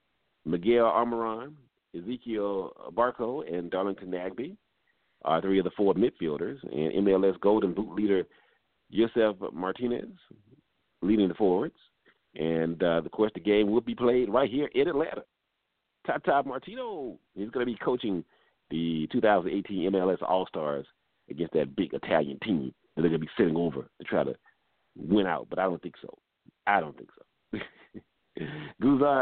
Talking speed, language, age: 155 wpm, English, 40-59